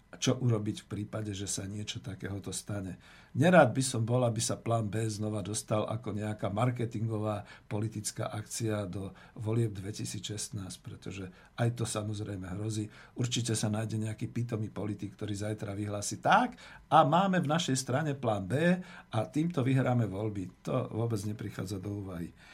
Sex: male